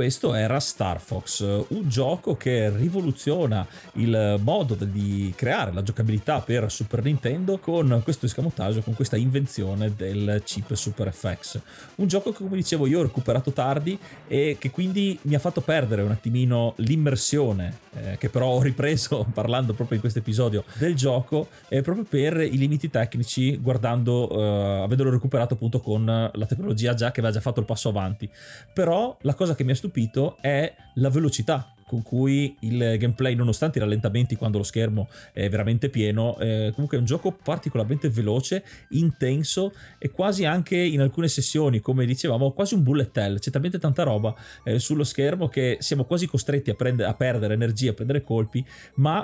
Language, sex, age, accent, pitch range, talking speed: Italian, male, 30-49, native, 115-150 Hz, 170 wpm